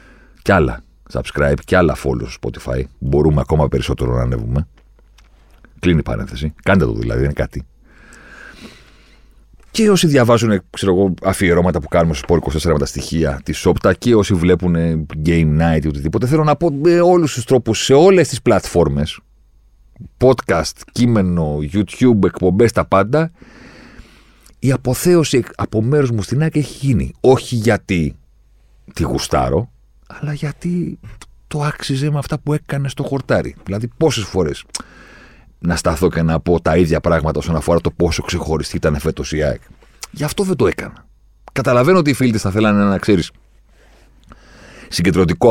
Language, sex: Greek, male